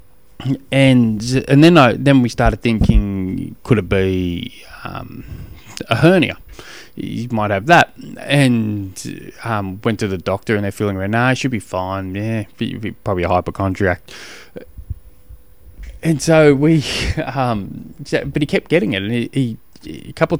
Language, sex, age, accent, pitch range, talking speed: English, male, 20-39, Australian, 100-145 Hz, 155 wpm